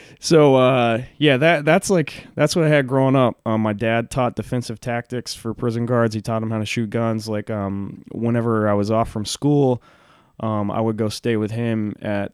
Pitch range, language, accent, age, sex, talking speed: 110-135 Hz, English, American, 20-39, male, 215 wpm